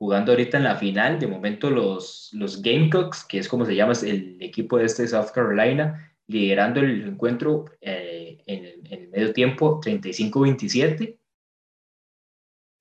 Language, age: Spanish, 20-39